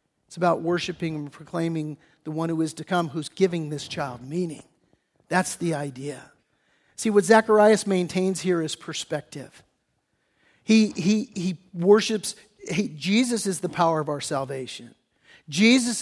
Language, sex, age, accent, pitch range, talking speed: English, male, 50-69, American, 165-210 Hz, 145 wpm